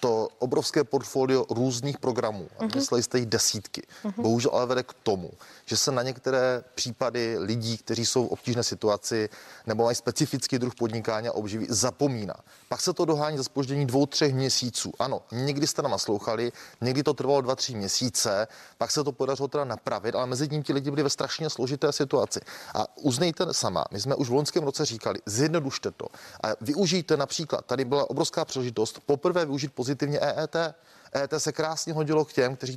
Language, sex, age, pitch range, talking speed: Czech, male, 30-49, 125-150 Hz, 185 wpm